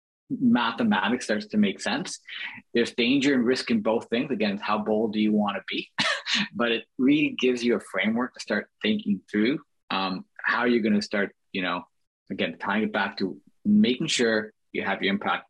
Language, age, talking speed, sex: English, 30-49, 200 wpm, male